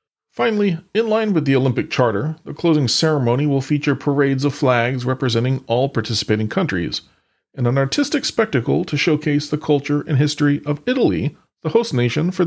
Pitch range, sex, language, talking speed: 120-155 Hz, male, English, 170 wpm